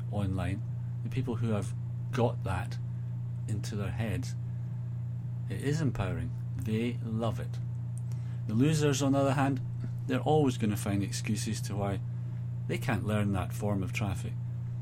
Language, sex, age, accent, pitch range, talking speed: English, male, 40-59, British, 115-120 Hz, 150 wpm